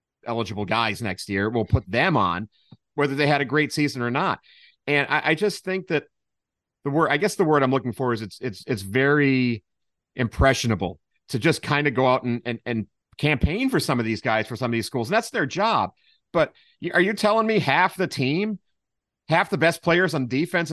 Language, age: English, 40-59